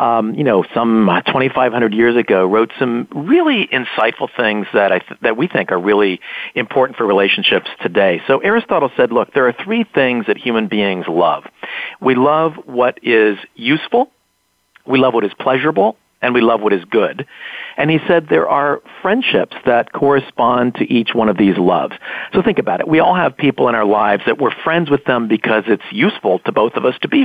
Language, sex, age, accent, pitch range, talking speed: English, male, 40-59, American, 110-150 Hz, 195 wpm